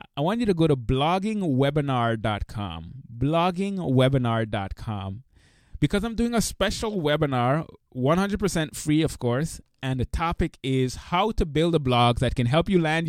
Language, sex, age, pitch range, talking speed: English, male, 20-39, 125-175 Hz, 145 wpm